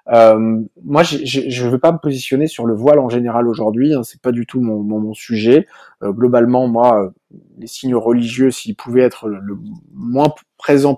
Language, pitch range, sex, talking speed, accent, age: French, 125-150 Hz, male, 225 wpm, French, 20-39